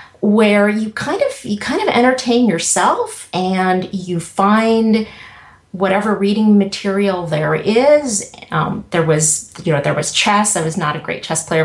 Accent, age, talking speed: American, 40-59, 165 wpm